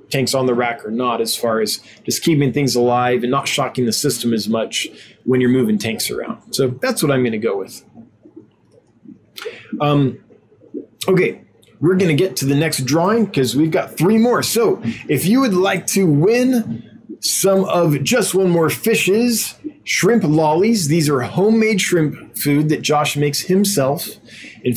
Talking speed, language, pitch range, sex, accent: 175 wpm, English, 130-190 Hz, male, American